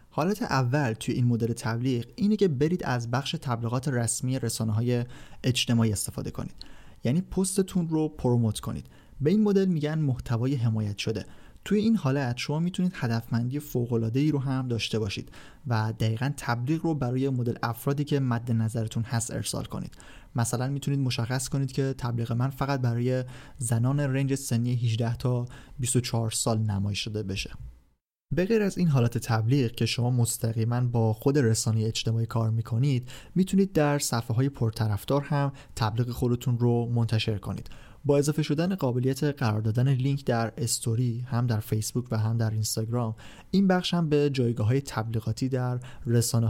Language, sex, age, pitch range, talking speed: Persian, male, 30-49, 115-140 Hz, 160 wpm